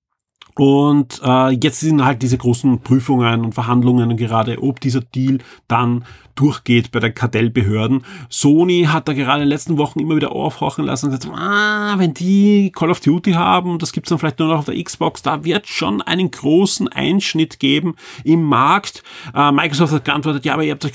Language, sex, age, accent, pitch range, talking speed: German, male, 40-59, German, 120-150 Hz, 200 wpm